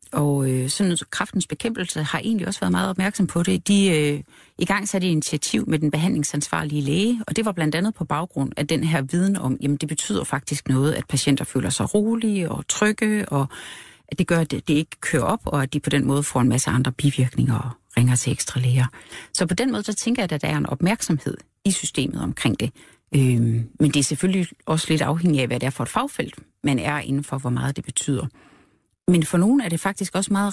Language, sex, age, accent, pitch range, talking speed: Danish, female, 40-59, native, 140-185 Hz, 235 wpm